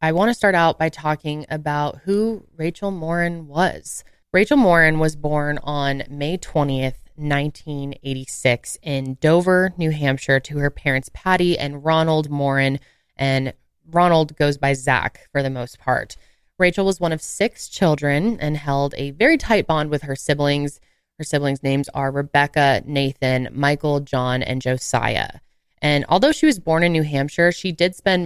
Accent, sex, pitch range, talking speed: American, female, 140-175 Hz, 160 wpm